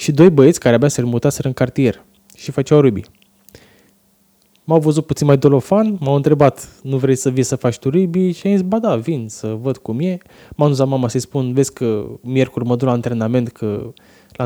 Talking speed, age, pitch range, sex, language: 210 wpm, 20-39, 125-165 Hz, male, Romanian